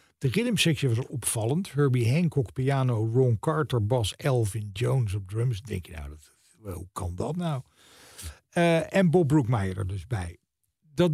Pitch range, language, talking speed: 120-170 Hz, Dutch, 160 wpm